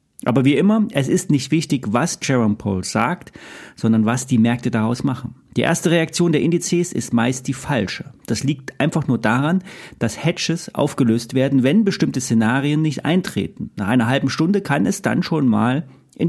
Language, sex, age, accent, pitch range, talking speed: German, male, 40-59, German, 120-165 Hz, 185 wpm